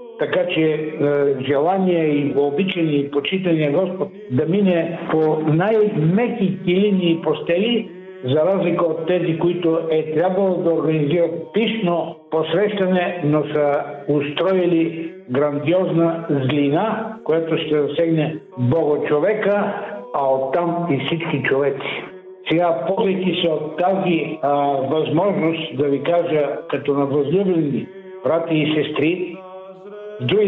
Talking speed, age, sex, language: 110 wpm, 60-79, male, Bulgarian